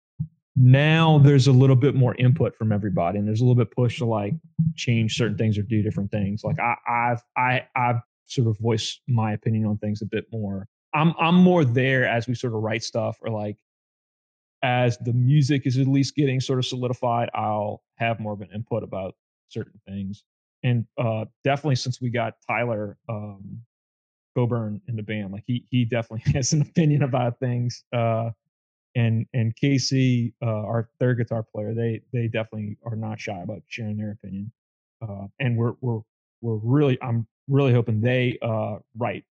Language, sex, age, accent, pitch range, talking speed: English, male, 30-49, American, 110-130 Hz, 190 wpm